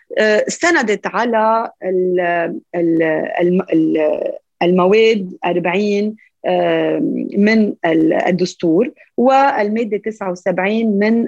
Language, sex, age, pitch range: Arabic, female, 30-49, 180-260 Hz